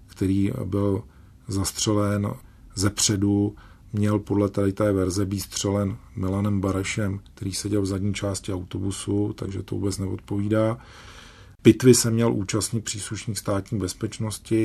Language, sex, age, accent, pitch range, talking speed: Czech, male, 40-59, native, 95-105 Hz, 125 wpm